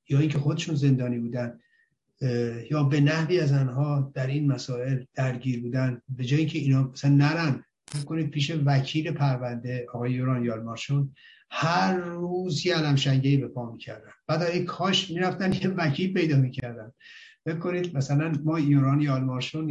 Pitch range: 125-155 Hz